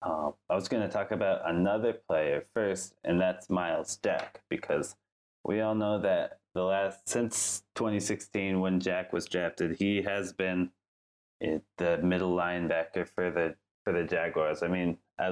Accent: American